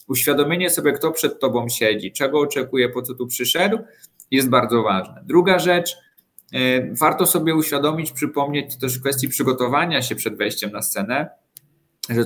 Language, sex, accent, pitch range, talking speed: Polish, male, native, 125-175 Hz, 150 wpm